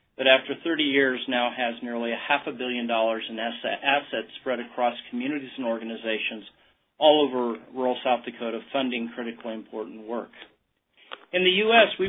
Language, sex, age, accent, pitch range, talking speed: English, male, 40-59, American, 120-155 Hz, 165 wpm